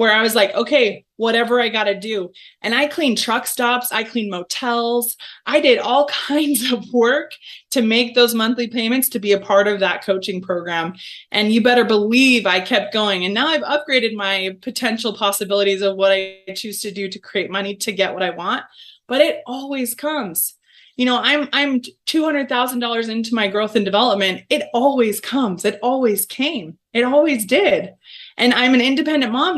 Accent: American